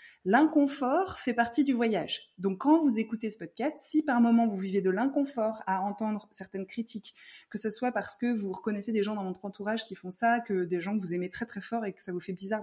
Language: French